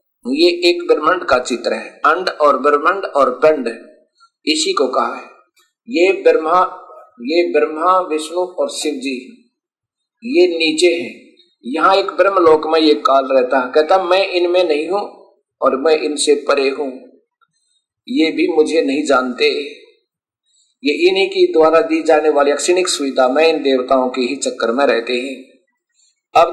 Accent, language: native, Hindi